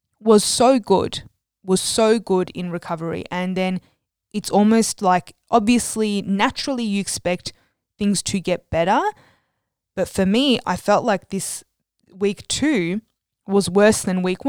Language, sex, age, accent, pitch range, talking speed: English, female, 20-39, Australian, 175-205 Hz, 140 wpm